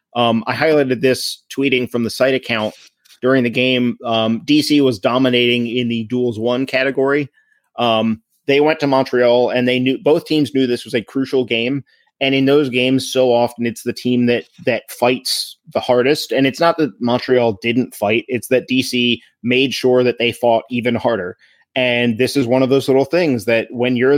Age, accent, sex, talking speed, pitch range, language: 30-49, American, male, 195 wpm, 115-130 Hz, English